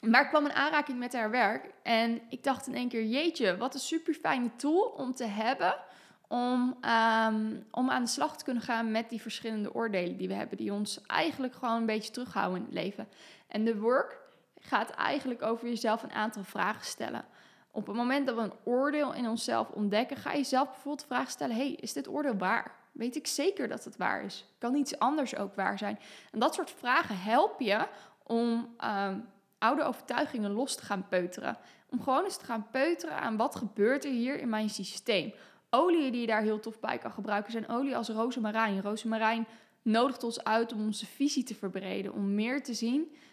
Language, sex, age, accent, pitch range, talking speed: Dutch, female, 10-29, Dutch, 210-260 Hz, 200 wpm